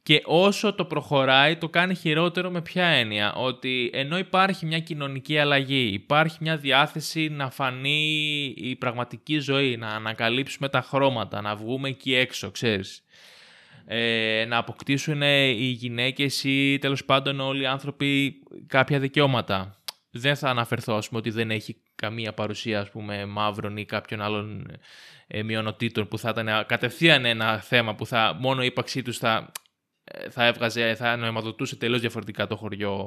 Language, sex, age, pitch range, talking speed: Greek, male, 20-39, 115-150 Hz, 145 wpm